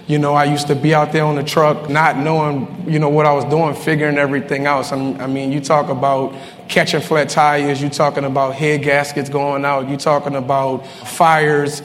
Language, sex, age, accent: English, male, 20-39, American